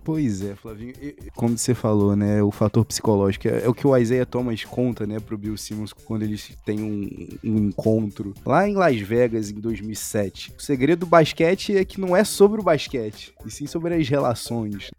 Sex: male